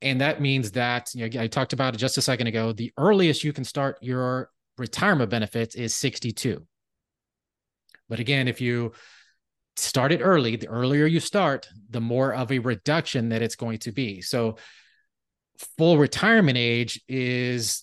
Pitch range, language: 115-140 Hz, English